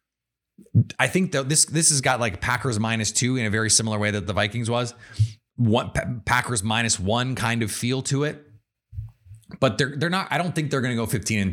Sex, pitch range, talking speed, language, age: male, 115-155 Hz, 220 wpm, English, 30-49